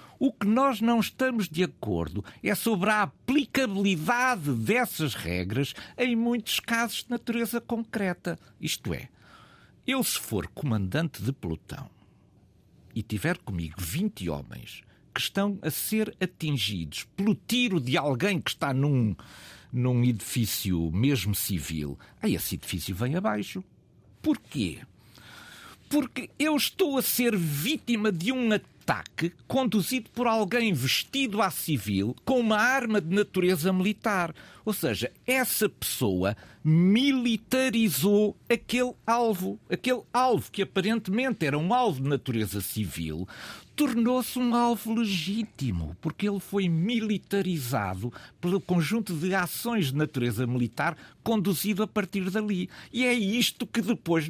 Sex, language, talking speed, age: male, Portuguese, 130 wpm, 50-69